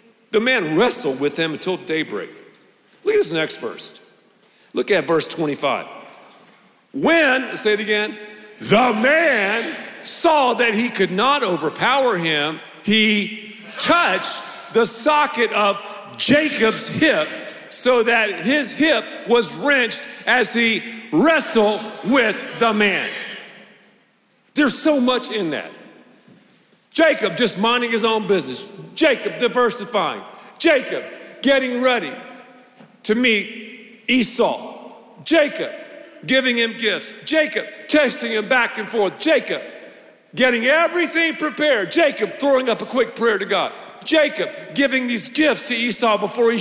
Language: English